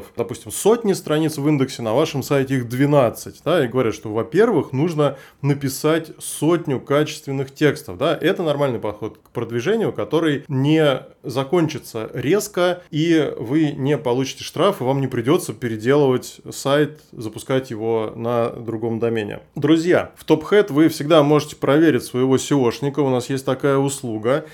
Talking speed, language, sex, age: 145 wpm, Russian, male, 20-39